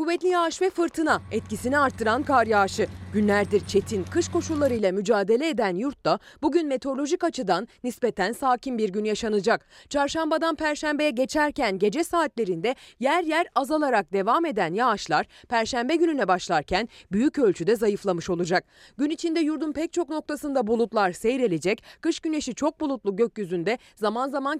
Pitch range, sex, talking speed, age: 210-295 Hz, female, 135 wpm, 30-49